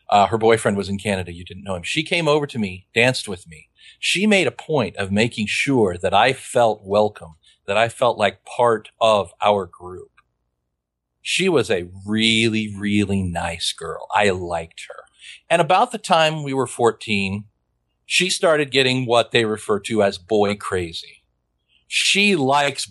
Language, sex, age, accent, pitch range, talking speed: English, male, 40-59, American, 90-125 Hz, 175 wpm